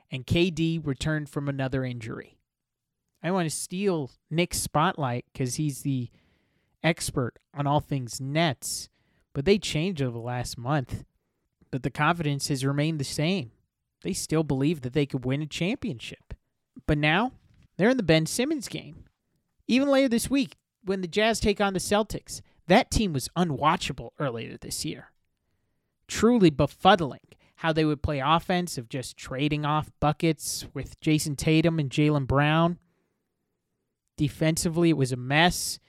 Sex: male